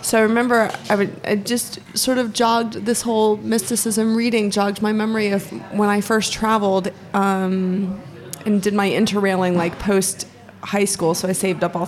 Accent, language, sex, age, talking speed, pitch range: American, English, female, 20-39, 170 wpm, 175-210 Hz